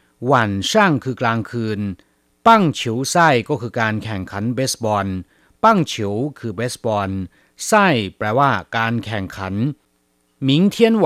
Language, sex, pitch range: Chinese, male, 100-145 Hz